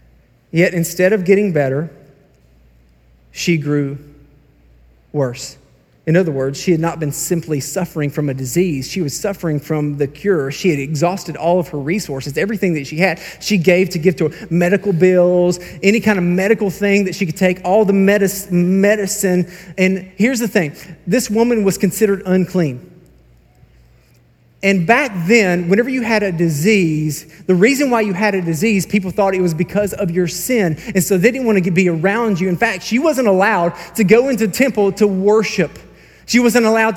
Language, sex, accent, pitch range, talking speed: English, male, American, 150-210 Hz, 180 wpm